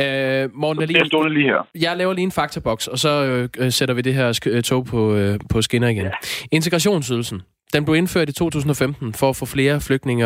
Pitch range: 110-145 Hz